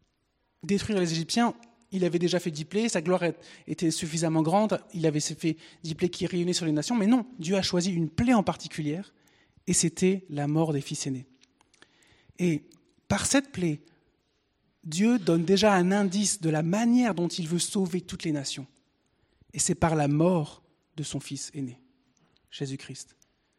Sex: male